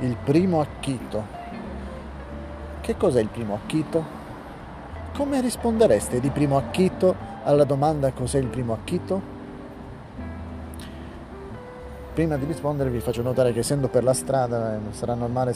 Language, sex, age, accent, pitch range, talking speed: Italian, male, 40-59, native, 105-155 Hz, 125 wpm